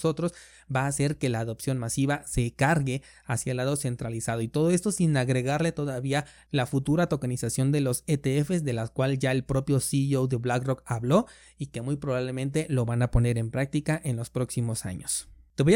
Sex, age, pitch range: male, 30-49, 125-155 Hz